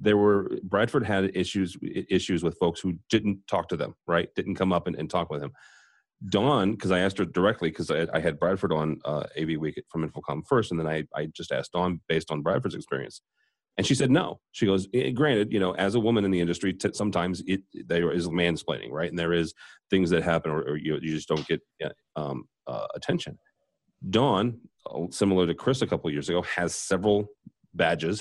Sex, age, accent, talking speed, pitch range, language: male, 30-49, American, 225 wpm, 85-105 Hz, English